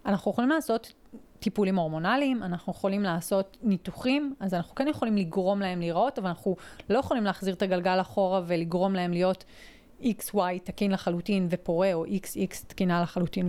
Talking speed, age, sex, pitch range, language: 155 wpm, 30-49, female, 185-235 Hz, Hebrew